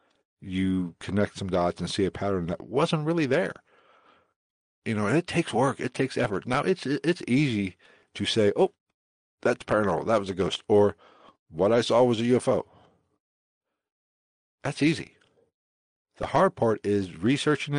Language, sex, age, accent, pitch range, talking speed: English, male, 60-79, American, 95-125 Hz, 160 wpm